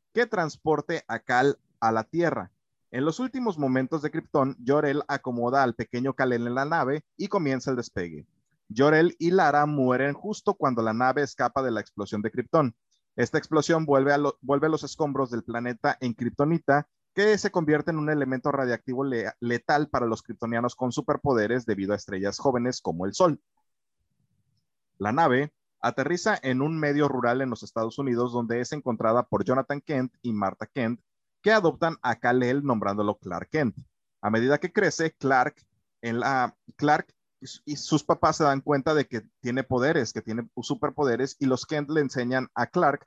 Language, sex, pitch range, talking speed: Spanish, male, 120-150 Hz, 180 wpm